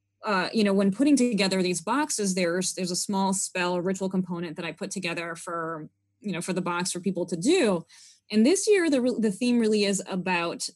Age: 20-39